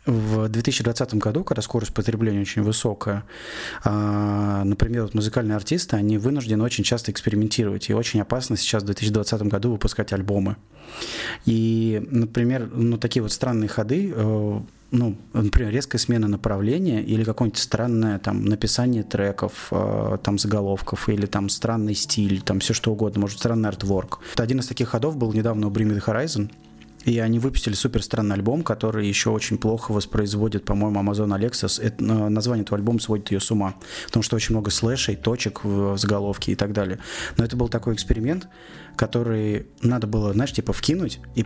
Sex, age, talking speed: male, 20-39, 160 wpm